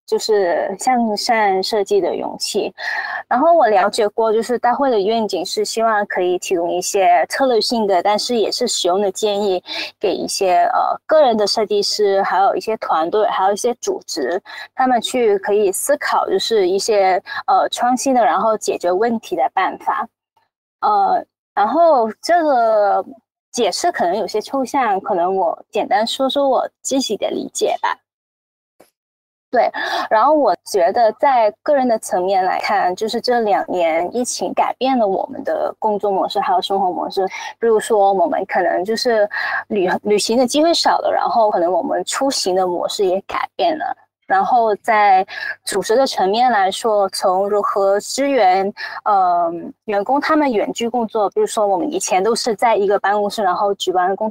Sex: female